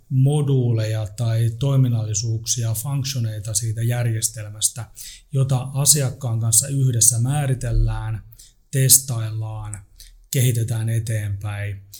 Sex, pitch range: male, 110-130 Hz